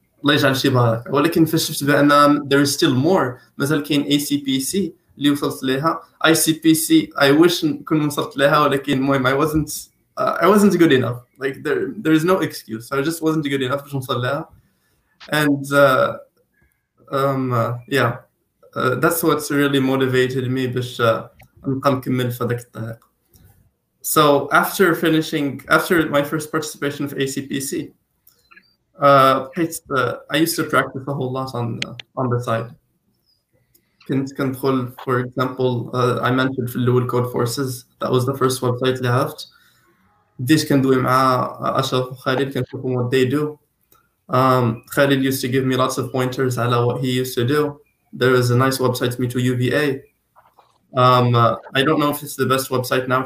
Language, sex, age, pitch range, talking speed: Arabic, male, 20-39, 125-145 Hz, 135 wpm